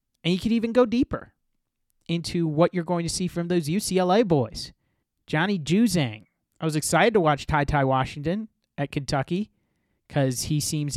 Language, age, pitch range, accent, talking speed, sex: English, 30-49, 135-175 Hz, American, 170 wpm, male